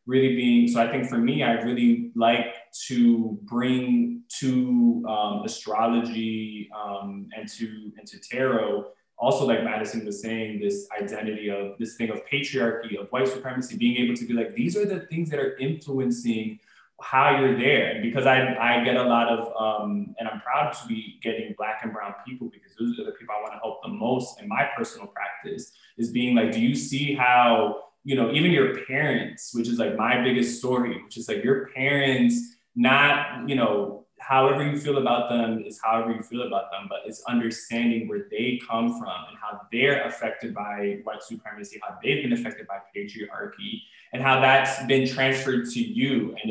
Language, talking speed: English, 190 wpm